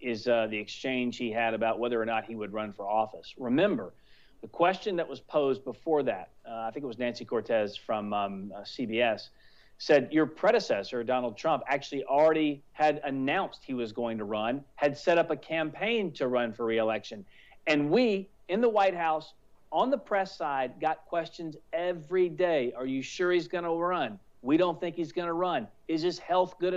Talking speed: 195 wpm